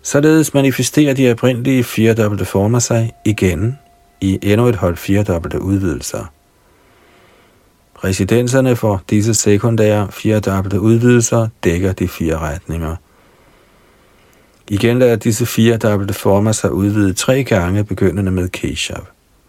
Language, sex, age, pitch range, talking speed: Danish, male, 50-69, 95-120 Hz, 110 wpm